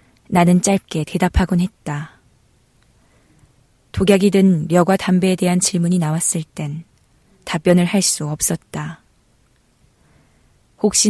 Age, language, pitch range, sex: 20-39, Korean, 150-185 Hz, female